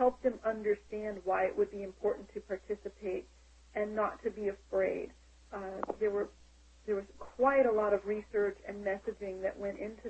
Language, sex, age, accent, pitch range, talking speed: English, female, 40-59, American, 190-250 Hz, 180 wpm